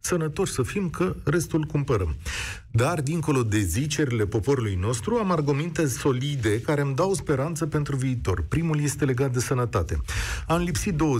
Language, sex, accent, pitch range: Romanian, male, native, 110-155 Hz